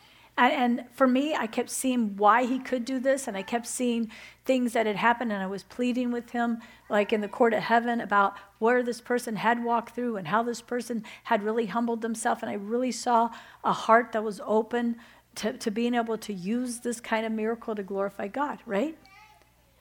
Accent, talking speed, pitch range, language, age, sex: American, 210 wpm, 205-250 Hz, English, 50-69, female